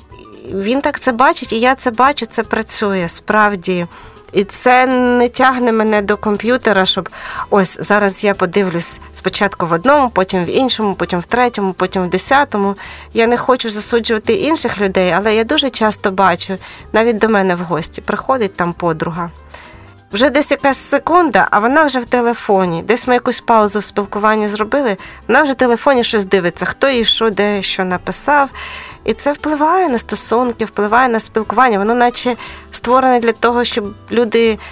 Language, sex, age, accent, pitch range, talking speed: Ukrainian, female, 30-49, native, 195-250 Hz, 170 wpm